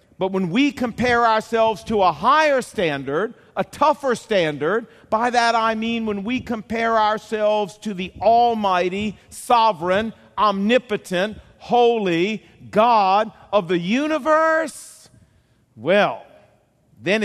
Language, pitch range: English, 180-240 Hz